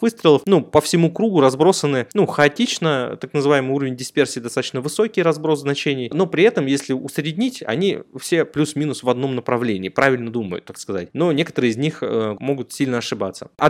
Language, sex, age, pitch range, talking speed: Russian, male, 20-39, 125-160 Hz, 170 wpm